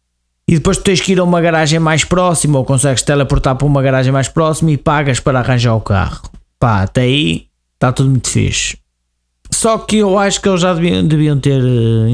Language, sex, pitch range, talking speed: Portuguese, male, 100-155 Hz, 215 wpm